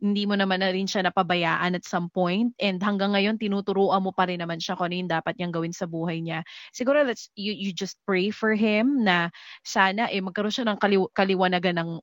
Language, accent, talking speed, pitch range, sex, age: Filipino, native, 220 wpm, 185-225 Hz, female, 20-39